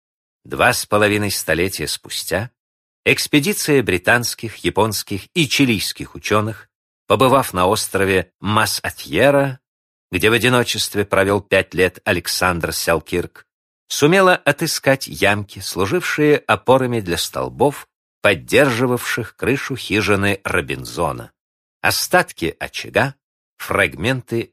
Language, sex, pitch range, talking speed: Russian, male, 95-150 Hz, 90 wpm